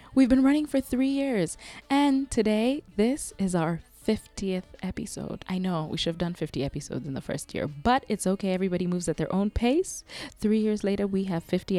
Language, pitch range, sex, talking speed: English, 170-225 Hz, female, 205 wpm